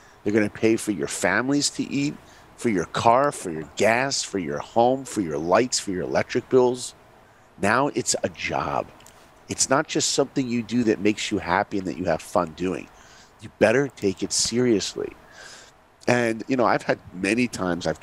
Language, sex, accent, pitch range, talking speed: English, male, American, 100-125 Hz, 195 wpm